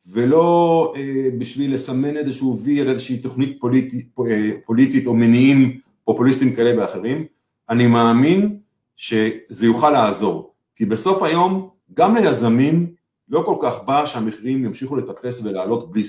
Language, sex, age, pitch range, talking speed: Hebrew, male, 50-69, 115-145 Hz, 125 wpm